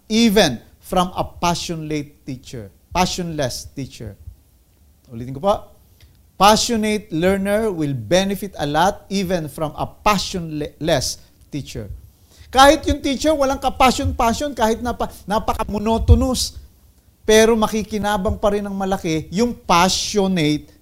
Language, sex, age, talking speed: English, male, 50-69, 105 wpm